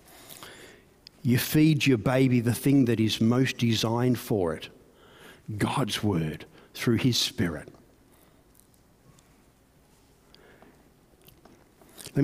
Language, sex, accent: English, male, Australian